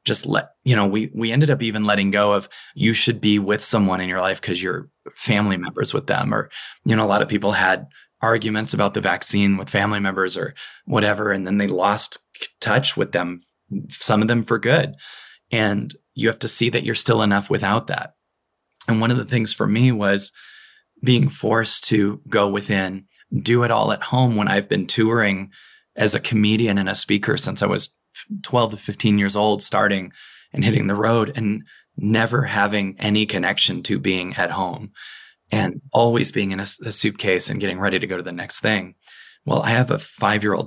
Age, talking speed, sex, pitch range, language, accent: 20-39, 200 wpm, male, 100-115 Hz, English, American